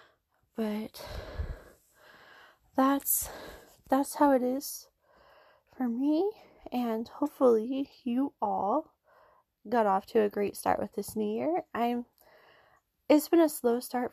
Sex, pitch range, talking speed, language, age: female, 215-275 Hz, 120 wpm, English, 20-39